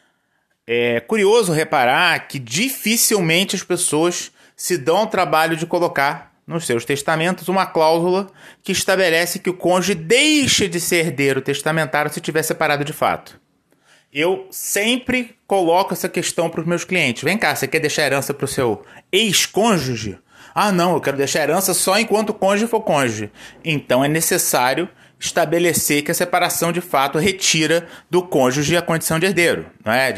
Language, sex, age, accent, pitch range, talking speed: Portuguese, male, 20-39, Brazilian, 140-180 Hz, 165 wpm